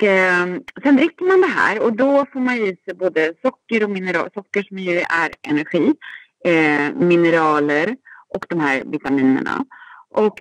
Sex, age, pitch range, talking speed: female, 30-49, 150-220 Hz, 150 wpm